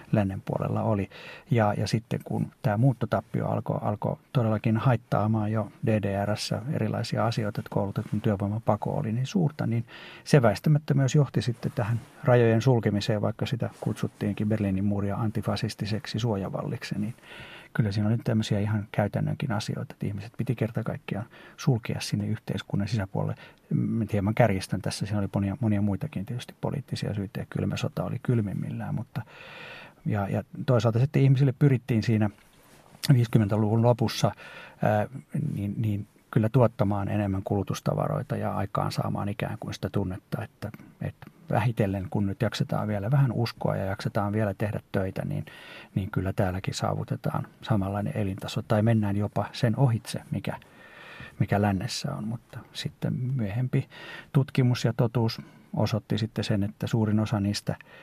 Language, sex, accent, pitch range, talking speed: Finnish, male, native, 105-130 Hz, 145 wpm